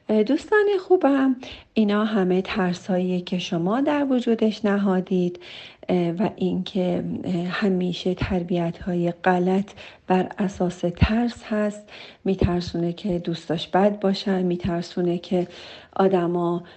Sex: female